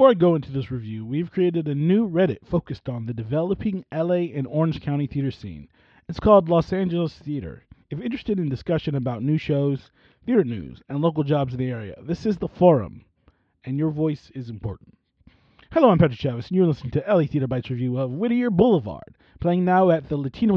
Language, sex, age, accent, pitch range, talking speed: English, male, 30-49, American, 130-170 Hz, 205 wpm